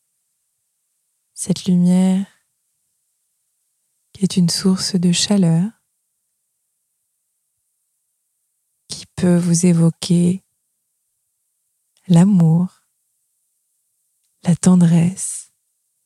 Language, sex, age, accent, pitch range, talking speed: French, female, 20-39, French, 170-190 Hz, 55 wpm